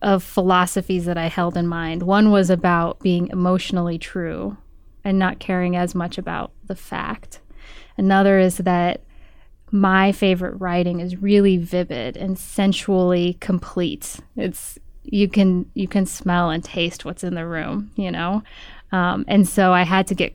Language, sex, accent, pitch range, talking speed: English, female, American, 175-195 Hz, 160 wpm